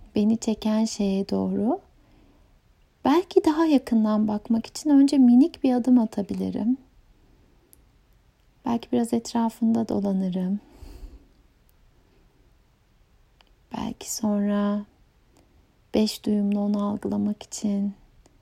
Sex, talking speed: female, 80 wpm